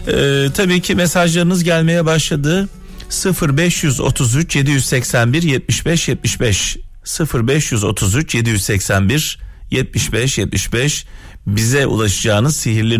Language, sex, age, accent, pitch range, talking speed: Turkish, male, 40-59, native, 100-160 Hz, 80 wpm